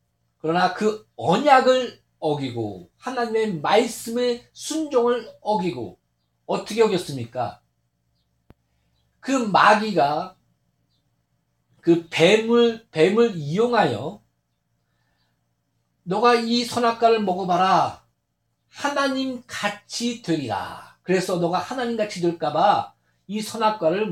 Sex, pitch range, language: male, 145-230 Hz, Korean